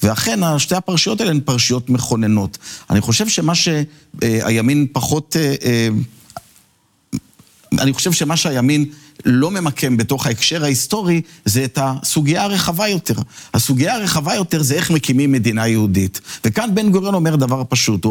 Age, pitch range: 50-69, 130-175 Hz